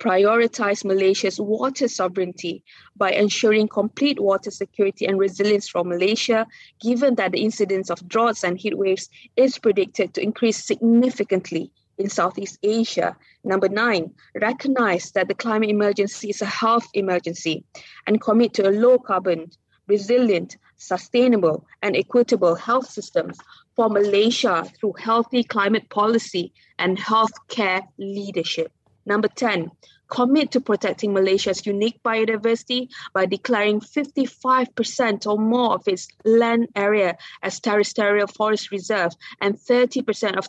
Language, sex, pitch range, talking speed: English, female, 195-230 Hz, 125 wpm